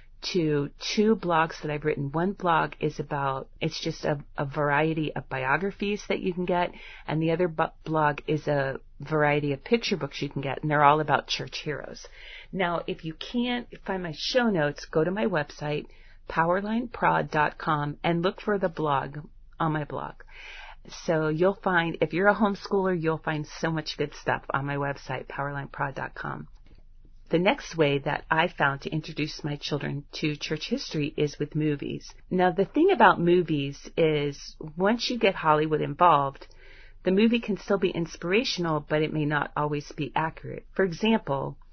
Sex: female